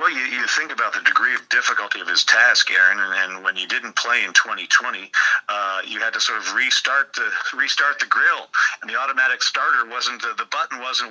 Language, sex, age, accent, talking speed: English, male, 50-69, American, 220 wpm